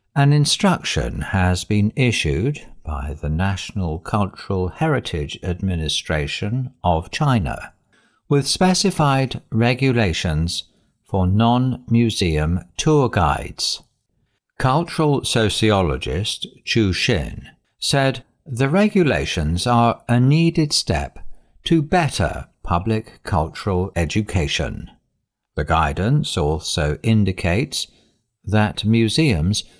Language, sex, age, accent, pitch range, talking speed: English, male, 60-79, British, 85-125 Hz, 85 wpm